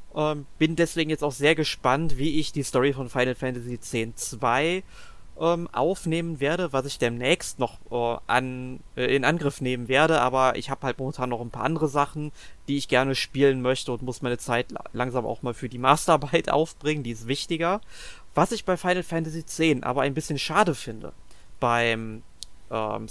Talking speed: 185 wpm